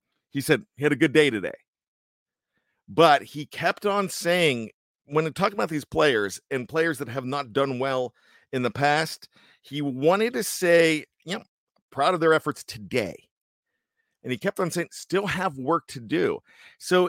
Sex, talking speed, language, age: male, 180 wpm, English, 50-69